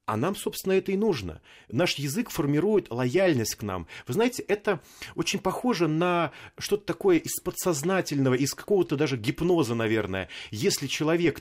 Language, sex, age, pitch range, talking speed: Russian, male, 30-49, 115-165 Hz, 155 wpm